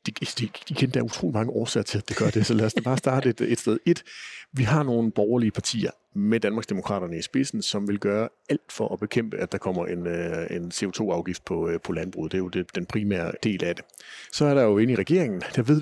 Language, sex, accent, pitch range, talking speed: Danish, male, native, 95-120 Hz, 250 wpm